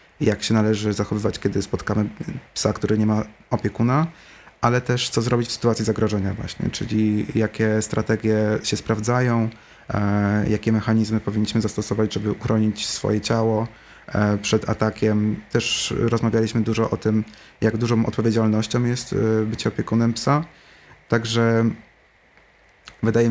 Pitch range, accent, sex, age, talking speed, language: 105-115 Hz, native, male, 30-49, 130 wpm, Polish